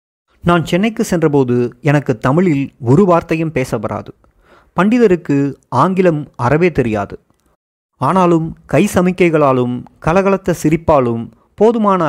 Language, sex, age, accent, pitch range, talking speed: Tamil, male, 30-49, native, 125-170 Hz, 90 wpm